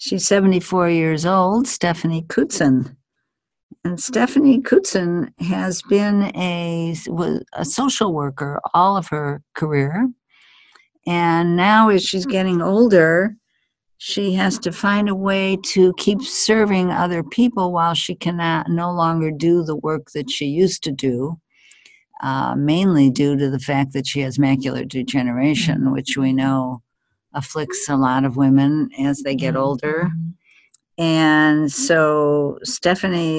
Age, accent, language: 60-79, American, English